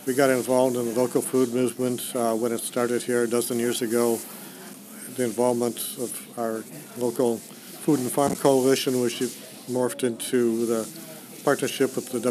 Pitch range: 120-135 Hz